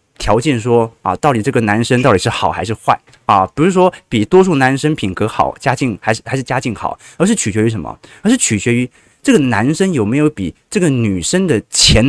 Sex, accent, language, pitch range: male, native, Chinese, 110-155 Hz